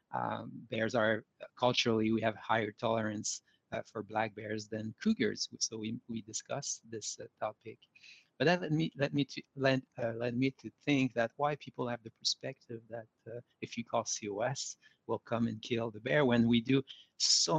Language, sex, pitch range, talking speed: English, male, 110-130 Hz, 190 wpm